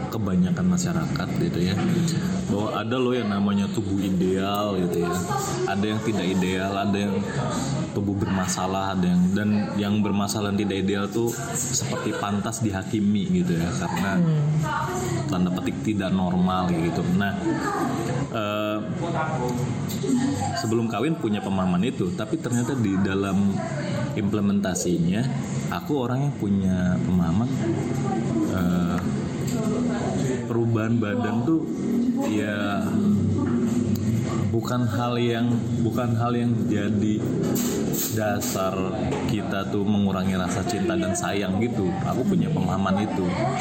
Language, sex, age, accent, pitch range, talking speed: Indonesian, male, 20-39, native, 100-125 Hz, 115 wpm